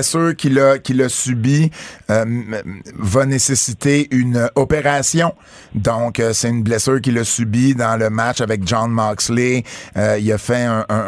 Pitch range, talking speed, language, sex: 115-145 Hz, 175 wpm, French, male